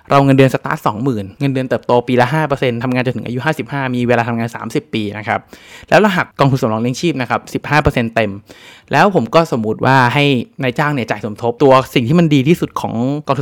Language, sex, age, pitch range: Thai, male, 20-39, 120-145 Hz